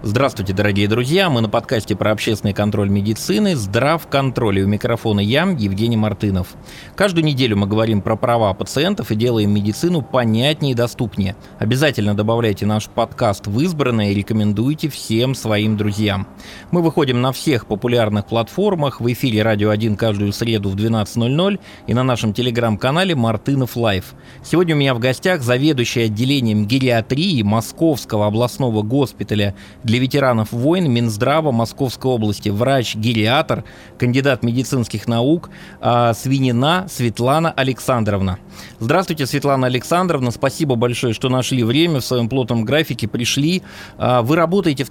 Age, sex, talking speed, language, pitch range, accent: 20-39, male, 135 wpm, Russian, 110-135 Hz, native